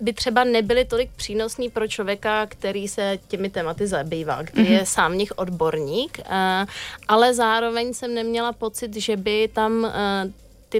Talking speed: 145 wpm